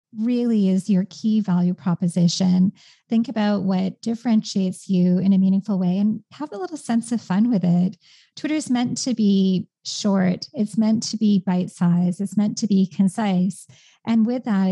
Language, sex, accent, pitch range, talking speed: English, female, American, 185-210 Hz, 175 wpm